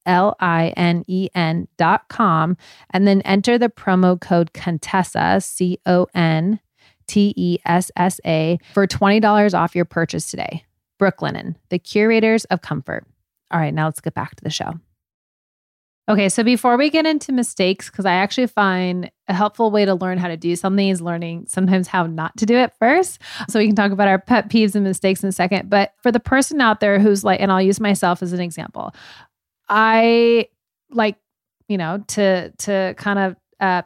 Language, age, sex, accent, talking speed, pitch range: English, 30-49, female, American, 185 wpm, 185-215 Hz